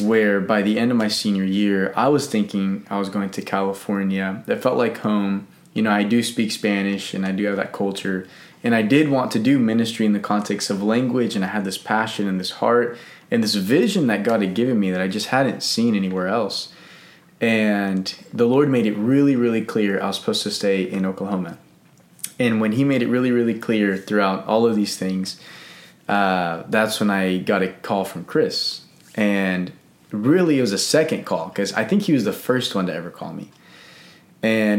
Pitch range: 100-120 Hz